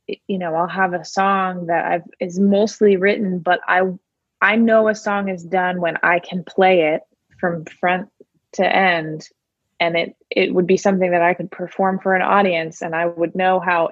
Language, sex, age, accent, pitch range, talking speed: English, female, 20-39, American, 170-200 Hz, 200 wpm